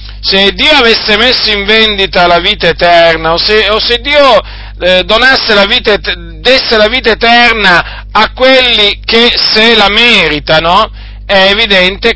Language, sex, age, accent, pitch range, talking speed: Italian, male, 40-59, native, 185-245 Hz, 150 wpm